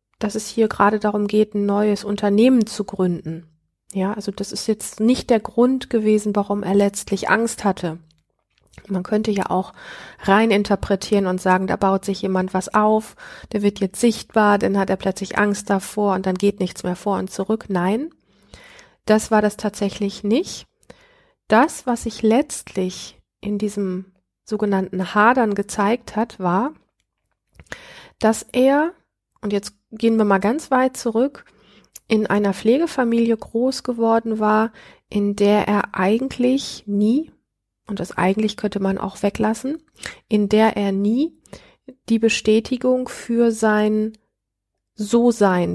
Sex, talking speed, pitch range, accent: female, 145 wpm, 195-230 Hz, German